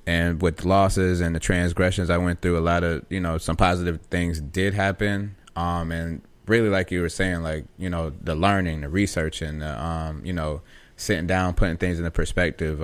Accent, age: American, 20-39